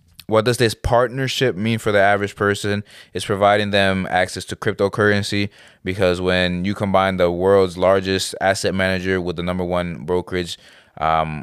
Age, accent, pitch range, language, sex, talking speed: 20-39, American, 90-100 Hz, English, male, 160 wpm